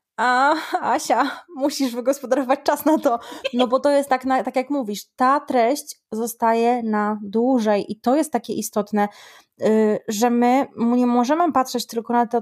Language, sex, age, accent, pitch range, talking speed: Polish, female, 20-39, native, 220-270 Hz, 165 wpm